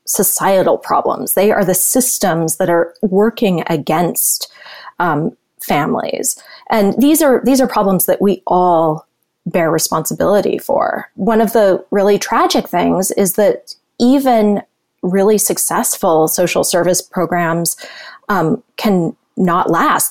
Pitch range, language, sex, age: 175-235 Hz, English, female, 20-39